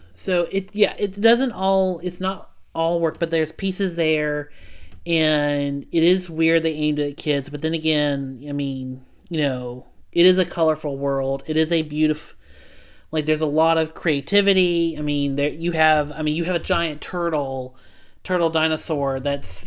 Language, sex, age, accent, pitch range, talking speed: English, male, 30-49, American, 130-160 Hz, 180 wpm